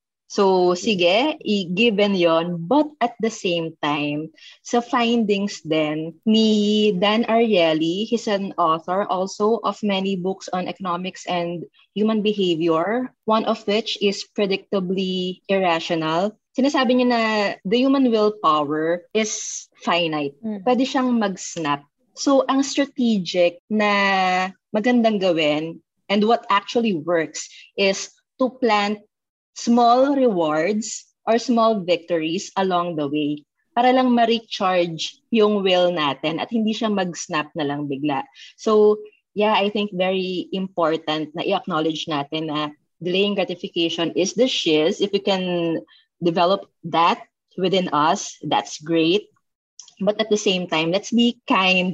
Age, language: 20-39, English